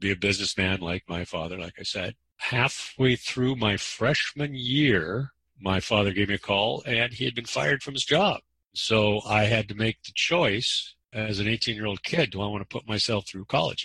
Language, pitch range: English, 100-125 Hz